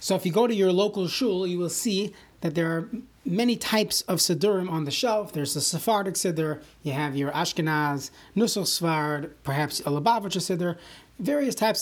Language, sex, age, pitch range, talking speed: English, male, 30-49, 165-205 Hz, 190 wpm